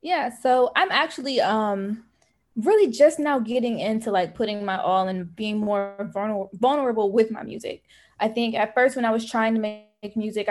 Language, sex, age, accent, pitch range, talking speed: English, female, 20-39, American, 195-235 Hz, 185 wpm